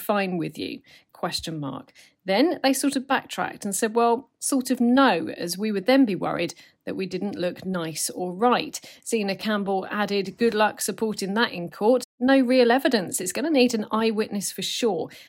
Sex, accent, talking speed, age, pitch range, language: female, British, 190 wpm, 40-59, 175-230 Hz, English